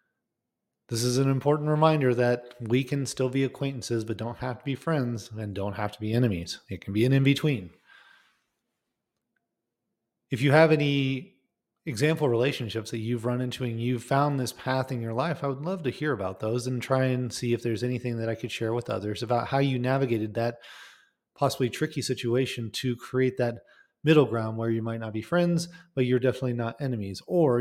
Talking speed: 200 wpm